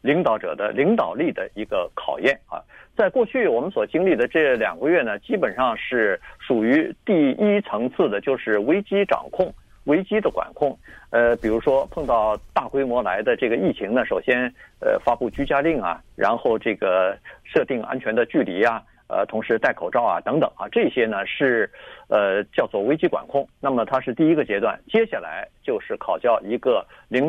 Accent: native